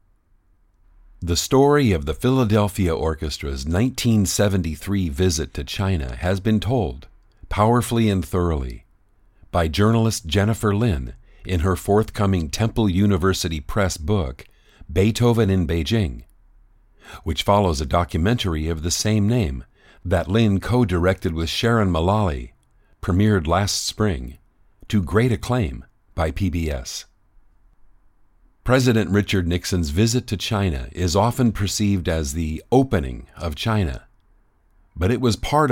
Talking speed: 120 wpm